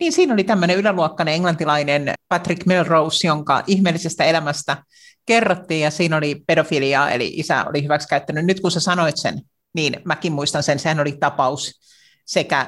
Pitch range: 150-190 Hz